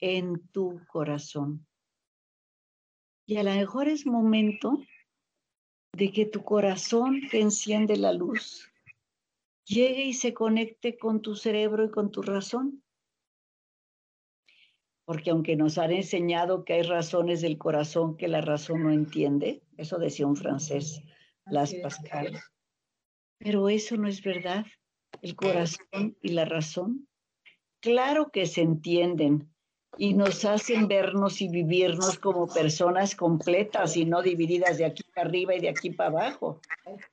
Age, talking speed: 50-69, 135 wpm